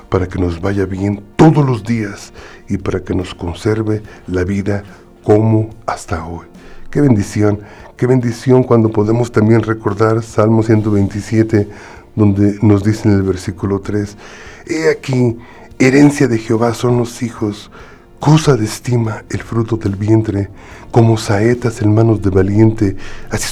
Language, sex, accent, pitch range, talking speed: Spanish, male, Mexican, 95-115 Hz, 145 wpm